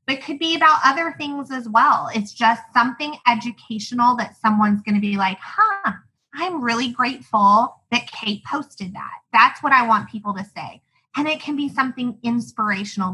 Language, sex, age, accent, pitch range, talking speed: English, female, 20-39, American, 200-245 Hz, 180 wpm